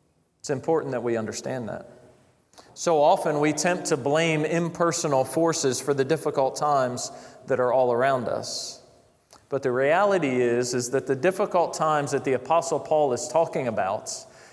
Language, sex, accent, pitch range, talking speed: English, male, American, 120-150 Hz, 160 wpm